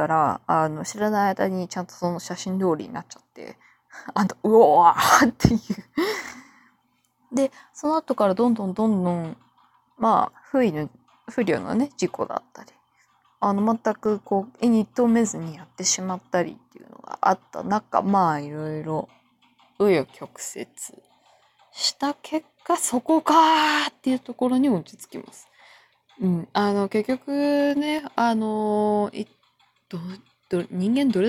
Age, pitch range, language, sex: 20-39, 175-260 Hz, Japanese, female